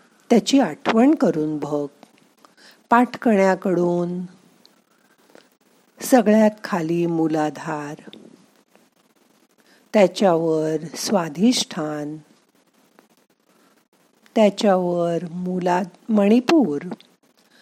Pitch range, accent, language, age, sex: 160-230 Hz, native, Marathi, 50-69, female